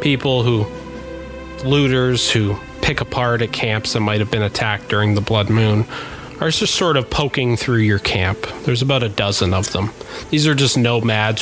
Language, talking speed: English, 185 wpm